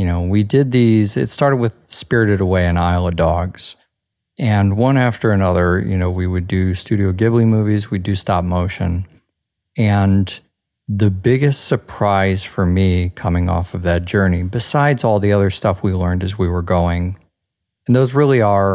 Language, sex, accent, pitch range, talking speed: English, male, American, 90-110 Hz, 180 wpm